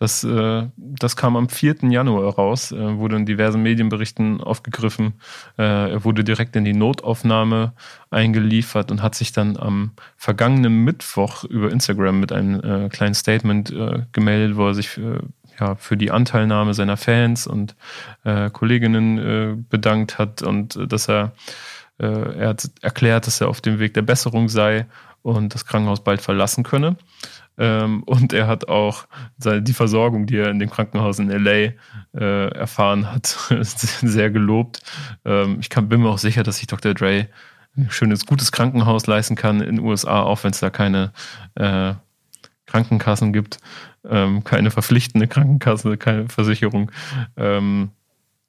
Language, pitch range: German, 105-115 Hz